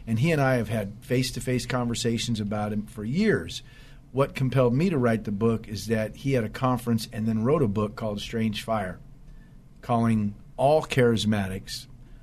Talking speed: 175 wpm